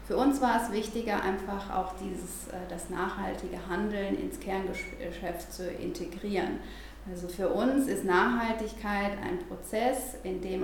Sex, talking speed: female, 130 wpm